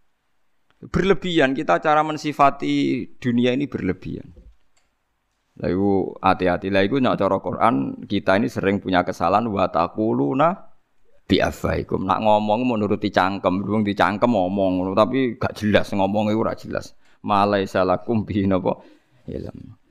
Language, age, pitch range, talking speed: Indonesian, 20-39, 90-110 Hz, 120 wpm